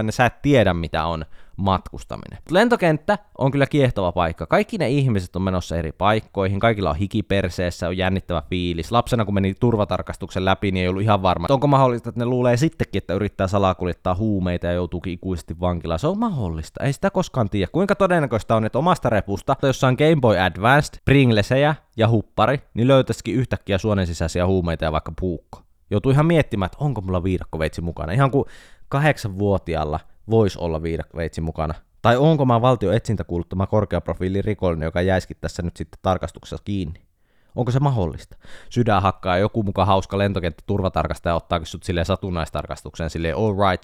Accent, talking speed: native, 170 wpm